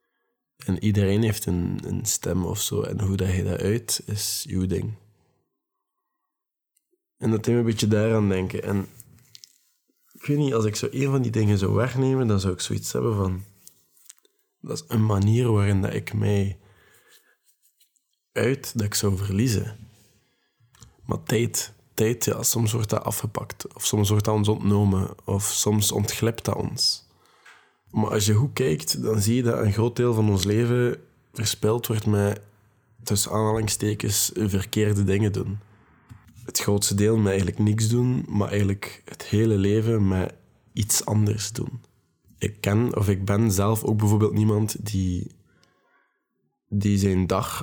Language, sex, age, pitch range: Dutch, male, 20-39, 100-115 Hz